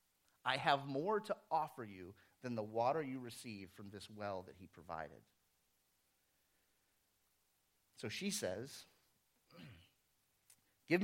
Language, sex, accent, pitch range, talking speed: English, male, American, 100-130 Hz, 115 wpm